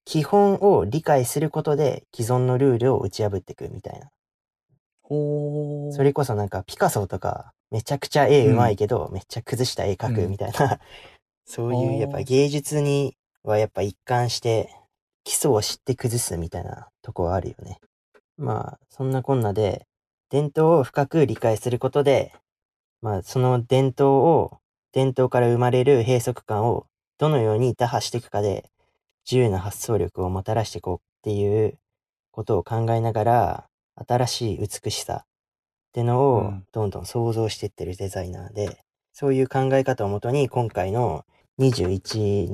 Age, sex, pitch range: 20-39, male, 100-135 Hz